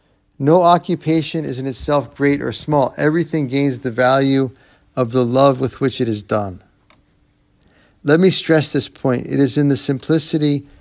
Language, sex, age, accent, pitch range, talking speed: English, male, 40-59, American, 115-140 Hz, 165 wpm